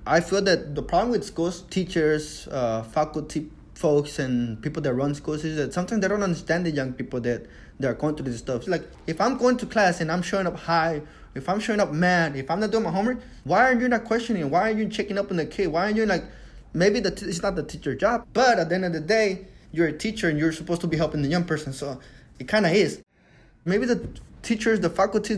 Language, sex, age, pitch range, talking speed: English, male, 20-39, 155-200 Hz, 260 wpm